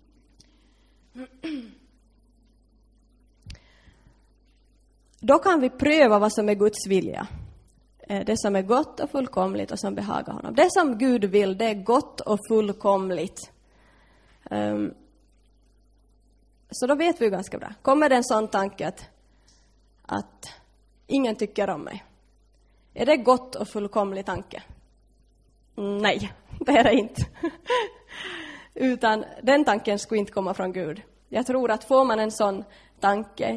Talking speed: 125 wpm